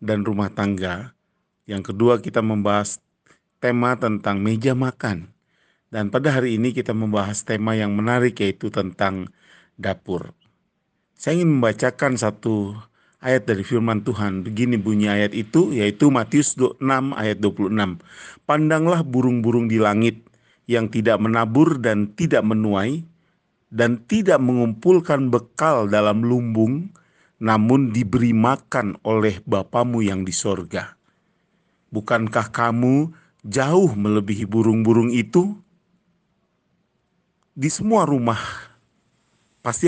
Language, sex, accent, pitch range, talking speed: Indonesian, male, native, 110-130 Hz, 110 wpm